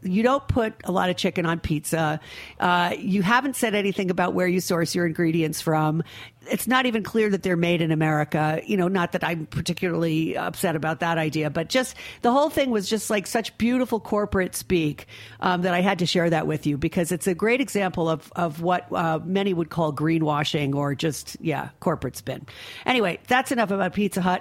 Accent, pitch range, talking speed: American, 160-220 Hz, 210 wpm